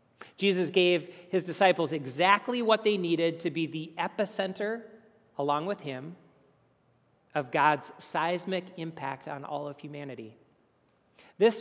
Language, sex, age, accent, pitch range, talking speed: English, male, 40-59, American, 145-185 Hz, 125 wpm